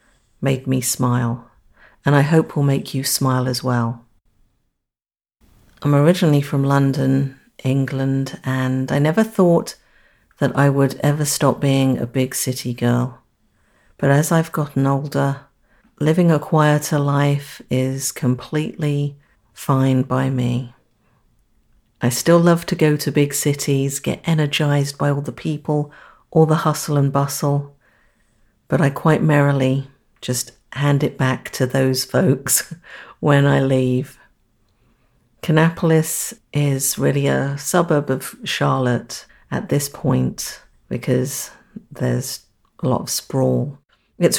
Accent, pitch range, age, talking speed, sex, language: British, 130-150 Hz, 50-69, 130 wpm, female, English